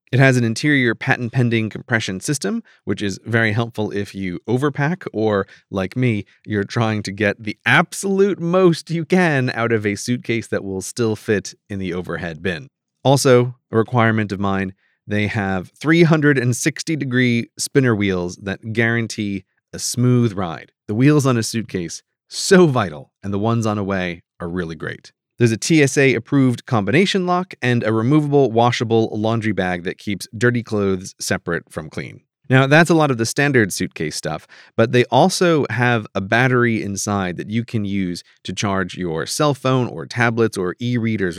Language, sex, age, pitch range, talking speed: English, male, 30-49, 100-130 Hz, 165 wpm